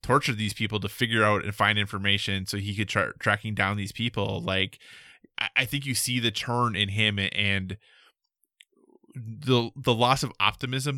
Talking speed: 175 wpm